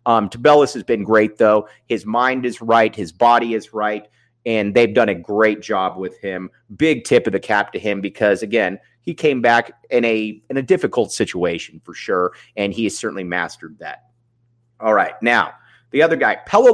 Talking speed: 195 wpm